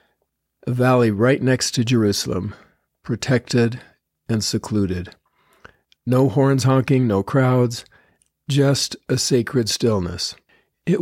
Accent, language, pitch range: American, English, 110-135 Hz